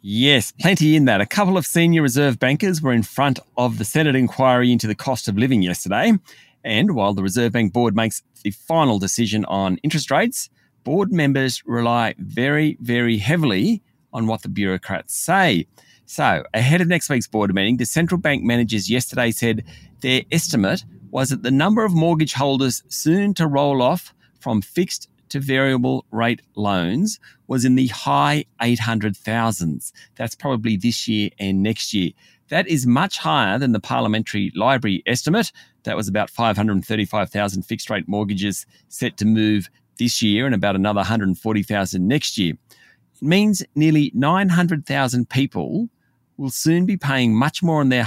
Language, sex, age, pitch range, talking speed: English, male, 40-59, 110-150 Hz, 165 wpm